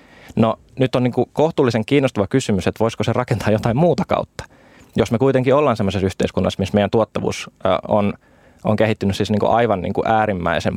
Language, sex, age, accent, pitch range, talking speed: Finnish, male, 20-39, native, 100-115 Hz, 175 wpm